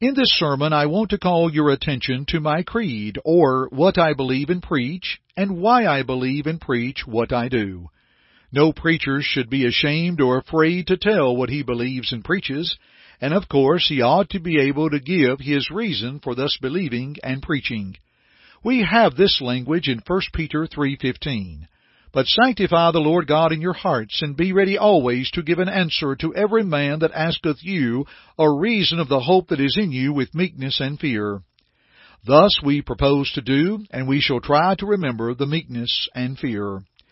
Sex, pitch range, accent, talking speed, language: male, 130-175 Hz, American, 190 wpm, English